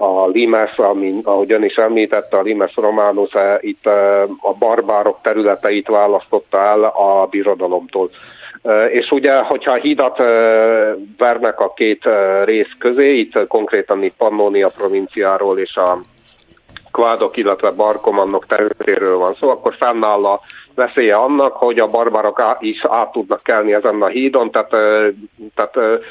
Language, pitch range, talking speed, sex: Hungarian, 105-135 Hz, 130 wpm, male